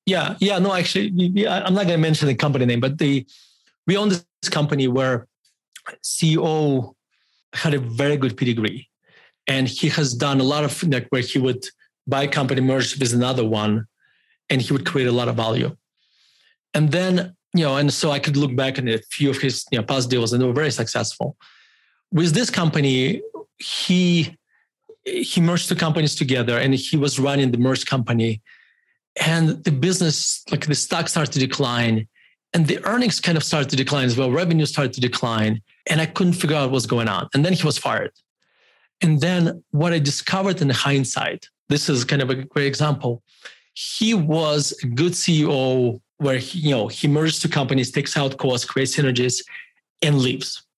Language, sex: English, male